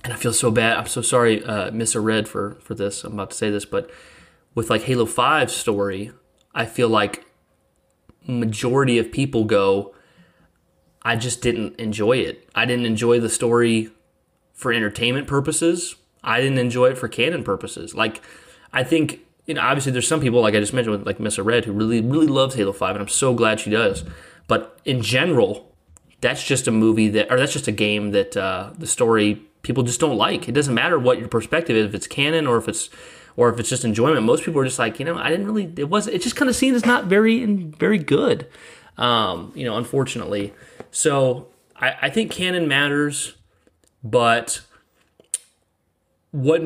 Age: 20-39